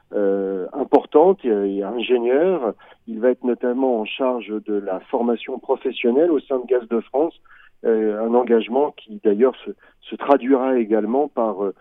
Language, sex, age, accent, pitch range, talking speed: French, male, 40-59, French, 115-130 Hz, 160 wpm